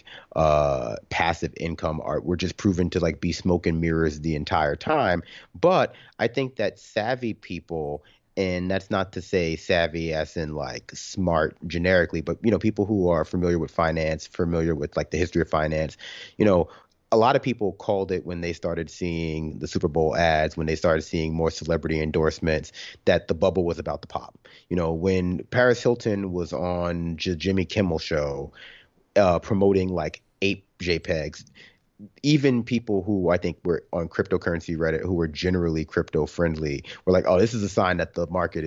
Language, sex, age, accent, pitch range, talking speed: English, male, 30-49, American, 80-95 Hz, 185 wpm